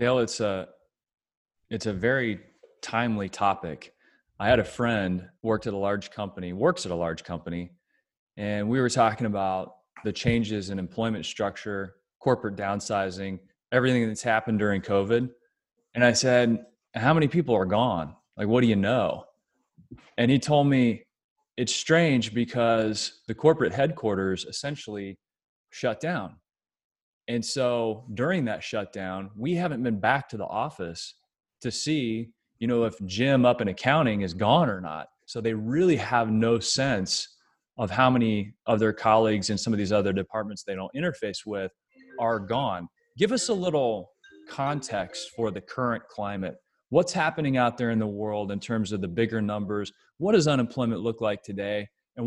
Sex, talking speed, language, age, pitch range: male, 165 wpm, English, 20-39, 100-125 Hz